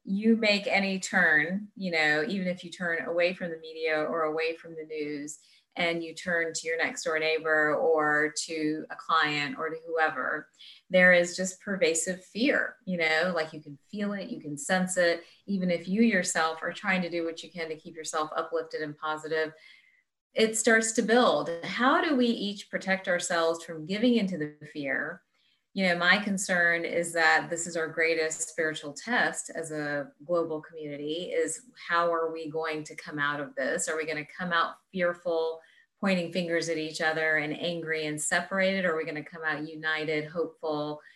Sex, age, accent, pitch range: female, 30-49, American, 155-190 Hz